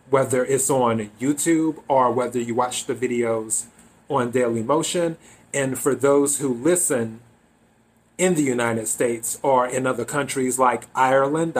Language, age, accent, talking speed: English, 30-49, American, 145 wpm